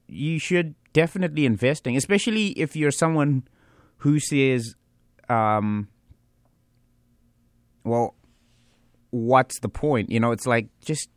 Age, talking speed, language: 20-39, 105 wpm, English